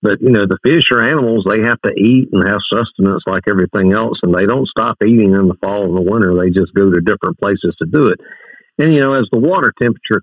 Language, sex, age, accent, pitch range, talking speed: English, male, 50-69, American, 95-115 Hz, 260 wpm